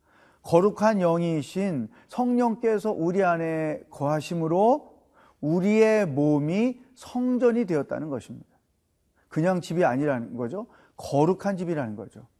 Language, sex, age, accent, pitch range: Korean, male, 40-59, native, 145-210 Hz